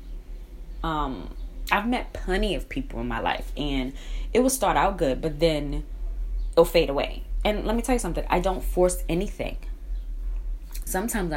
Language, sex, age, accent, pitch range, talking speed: English, female, 20-39, American, 140-185 Hz, 165 wpm